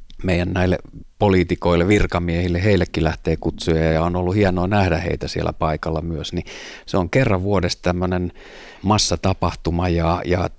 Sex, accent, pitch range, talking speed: male, native, 85-100 Hz, 140 wpm